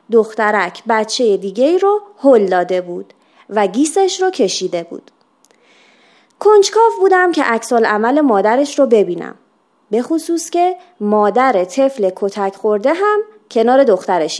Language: Persian